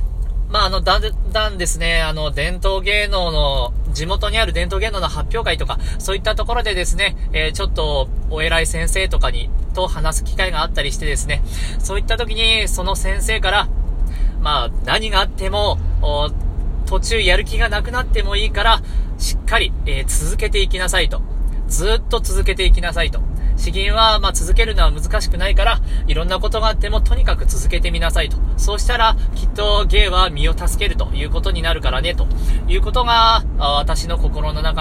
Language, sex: Japanese, male